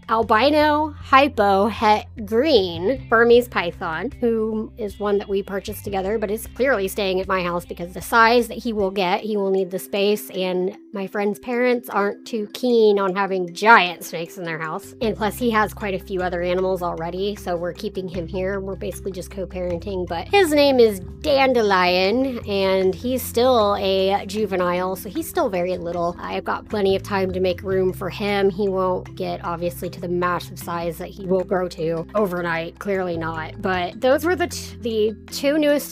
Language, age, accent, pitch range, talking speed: English, 30-49, American, 185-225 Hz, 185 wpm